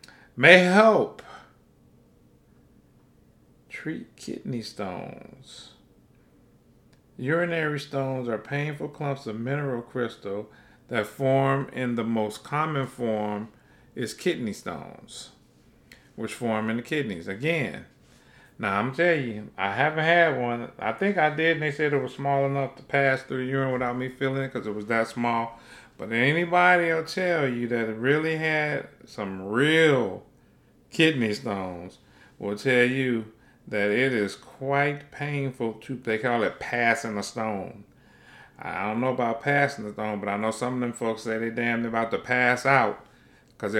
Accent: American